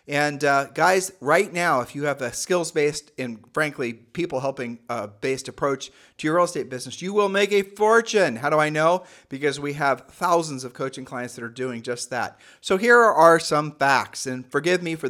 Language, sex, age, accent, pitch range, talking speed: English, male, 40-59, American, 130-180 Hz, 200 wpm